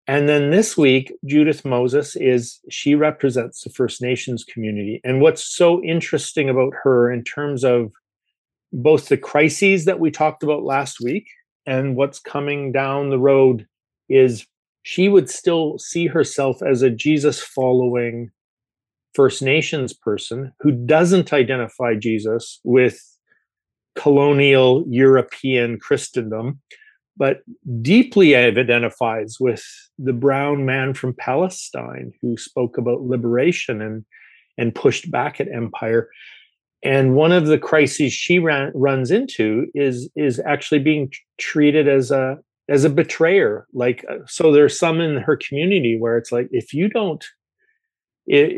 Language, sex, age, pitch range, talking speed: English, male, 40-59, 125-155 Hz, 135 wpm